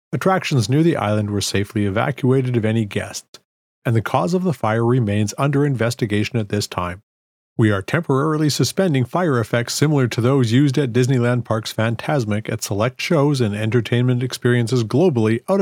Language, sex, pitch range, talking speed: English, male, 105-140 Hz, 170 wpm